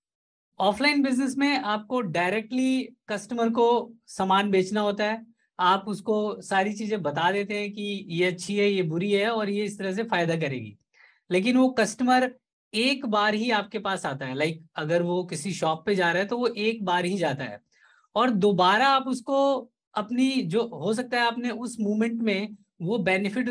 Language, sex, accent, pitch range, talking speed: Hindi, female, native, 180-235 Hz, 185 wpm